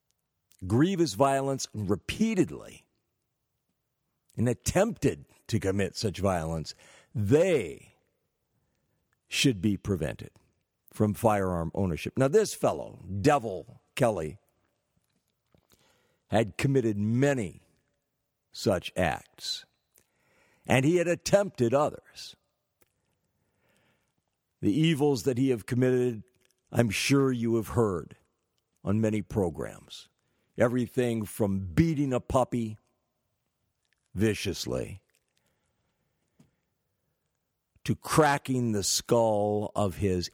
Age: 60-79